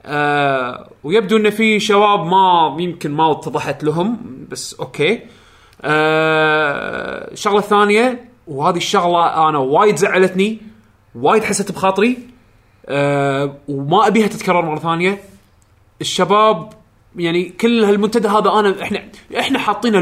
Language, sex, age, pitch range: Arabic, male, 20-39, 150-215 Hz